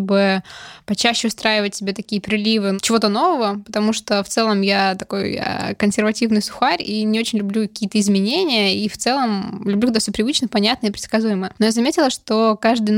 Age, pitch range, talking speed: 20-39, 200-230 Hz, 175 wpm